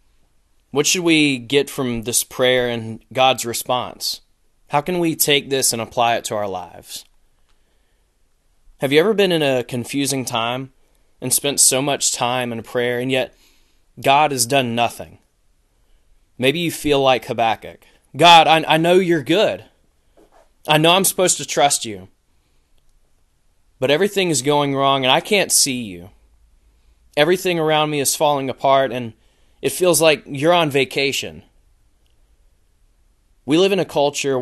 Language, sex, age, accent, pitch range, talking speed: English, male, 20-39, American, 115-145 Hz, 155 wpm